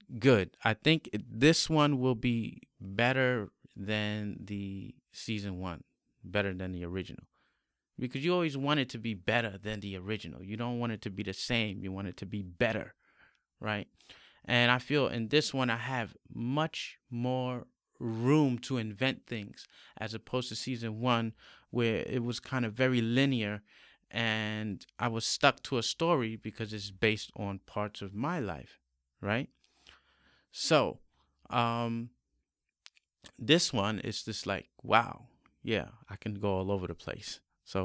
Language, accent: English, American